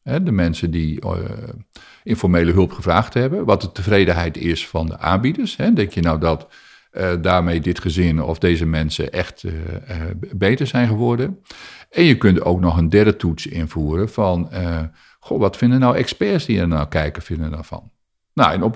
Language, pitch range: Dutch, 85-110 Hz